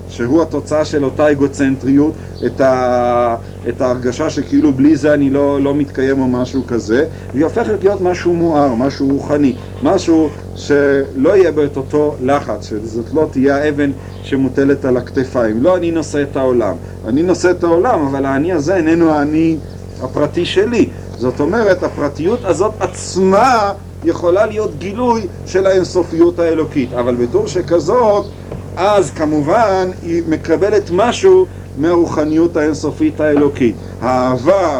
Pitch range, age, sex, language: 130-165 Hz, 50-69, male, Hebrew